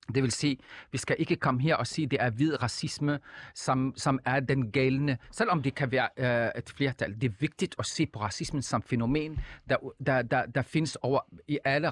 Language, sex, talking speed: Danish, male, 220 wpm